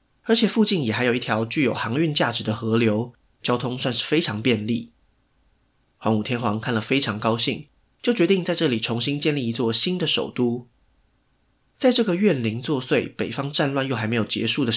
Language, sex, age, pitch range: Chinese, male, 20-39, 115-155 Hz